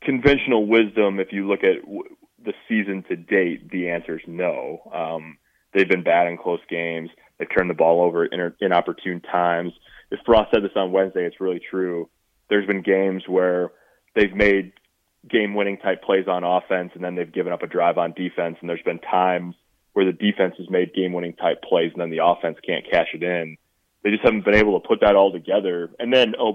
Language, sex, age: English, male, 20-39